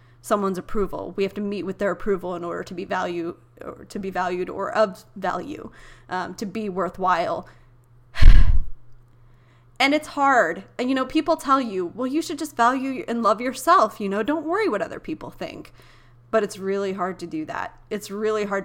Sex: female